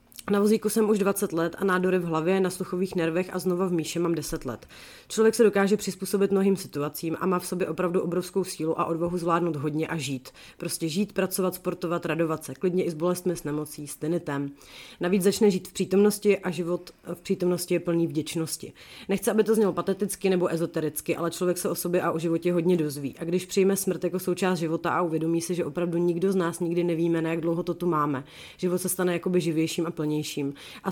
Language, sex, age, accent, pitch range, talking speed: Czech, female, 30-49, native, 165-190 Hz, 215 wpm